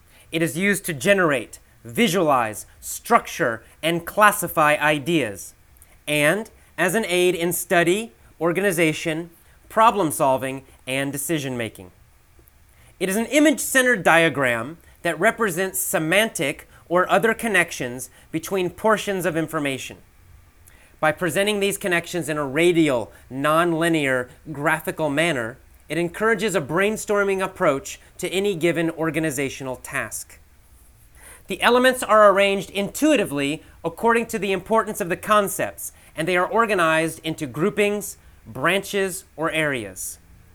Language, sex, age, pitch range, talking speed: German, male, 30-49, 125-190 Hz, 110 wpm